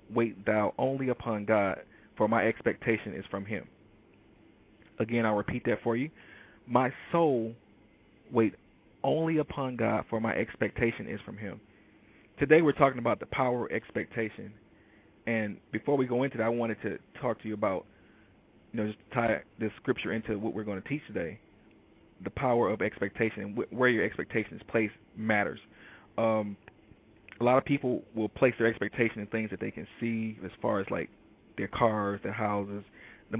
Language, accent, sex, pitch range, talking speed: English, American, male, 105-120 Hz, 175 wpm